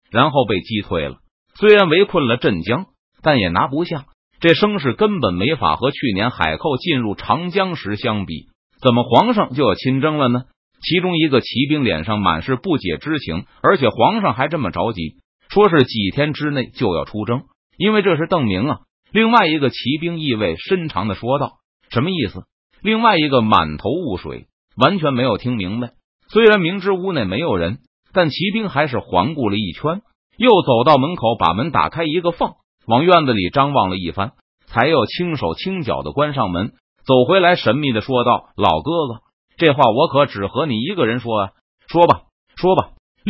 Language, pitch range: Chinese, 115-185 Hz